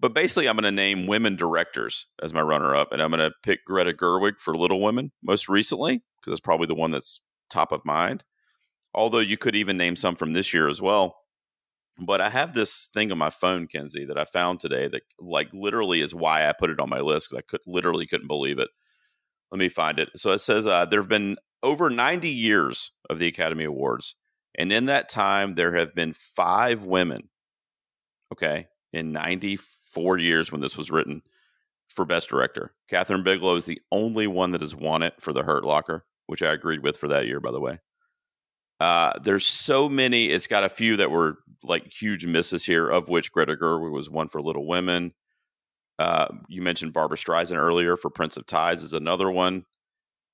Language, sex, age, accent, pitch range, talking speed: English, male, 40-59, American, 85-105 Hz, 205 wpm